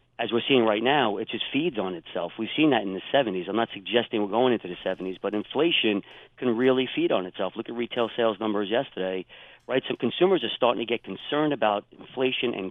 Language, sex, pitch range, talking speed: English, male, 105-125 Hz, 225 wpm